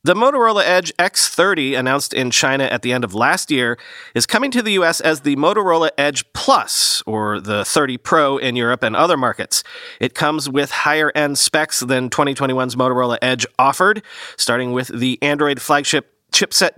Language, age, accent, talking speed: English, 40-59, American, 175 wpm